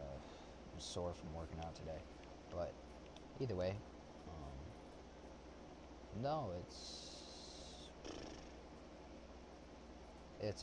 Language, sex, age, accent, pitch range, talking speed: English, male, 20-39, American, 75-95 Hz, 70 wpm